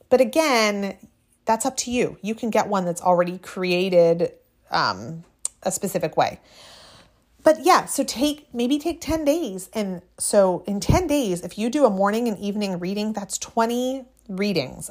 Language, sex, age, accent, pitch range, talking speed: English, female, 30-49, American, 180-230 Hz, 165 wpm